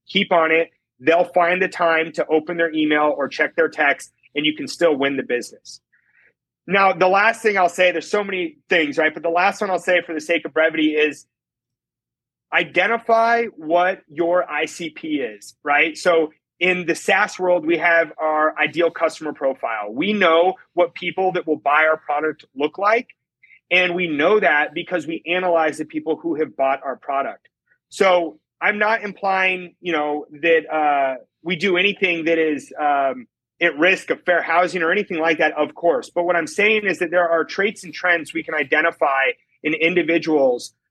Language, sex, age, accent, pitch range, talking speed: English, male, 30-49, American, 155-180 Hz, 190 wpm